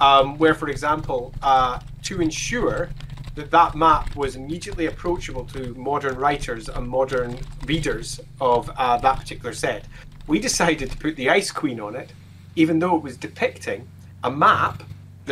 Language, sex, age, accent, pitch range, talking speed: English, male, 30-49, British, 130-160 Hz, 155 wpm